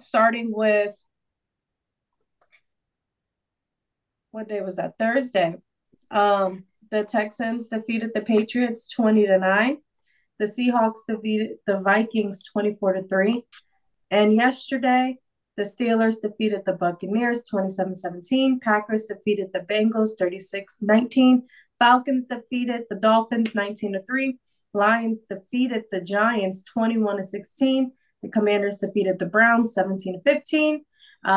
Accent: American